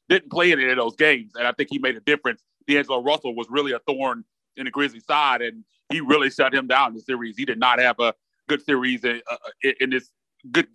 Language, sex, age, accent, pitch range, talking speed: English, male, 30-49, American, 125-150 Hz, 245 wpm